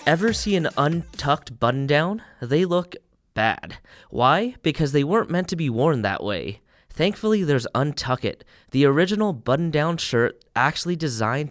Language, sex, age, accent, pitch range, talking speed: English, male, 20-39, American, 115-155 Hz, 155 wpm